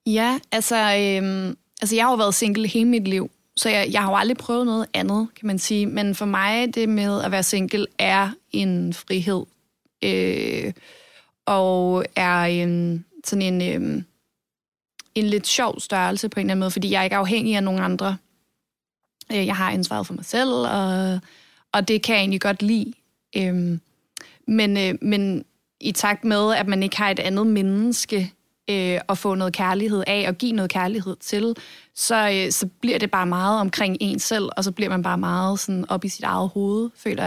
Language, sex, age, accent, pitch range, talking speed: Danish, female, 30-49, native, 190-215 Hz, 190 wpm